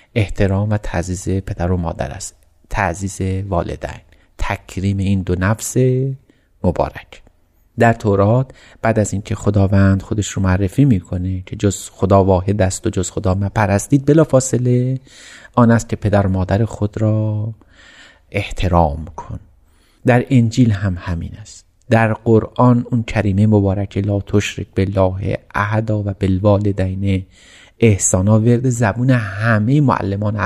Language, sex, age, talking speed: Persian, male, 30-49, 130 wpm